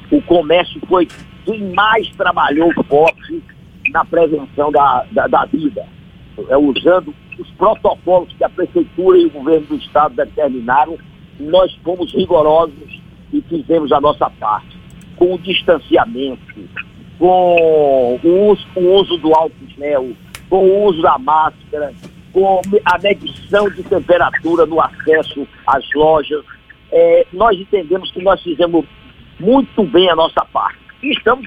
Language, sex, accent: Portuguese, male, Brazilian